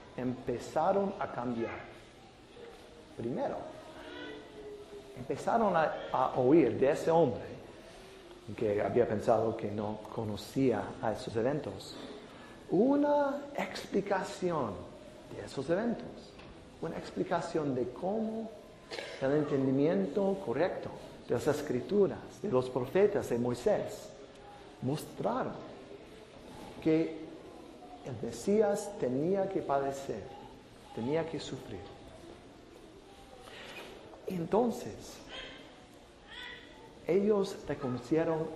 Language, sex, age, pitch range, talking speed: English, male, 50-69, 125-195 Hz, 80 wpm